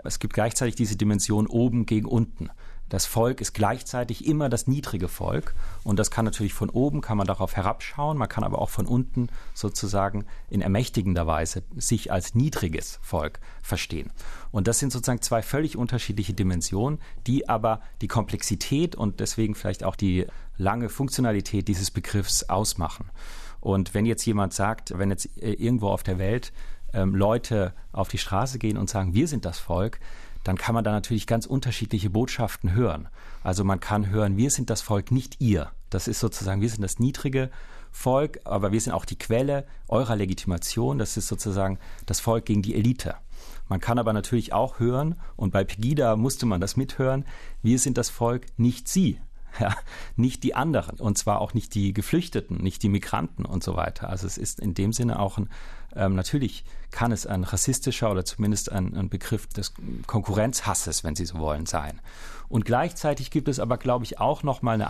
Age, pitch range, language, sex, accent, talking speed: 40-59, 95-120 Hz, German, male, German, 185 wpm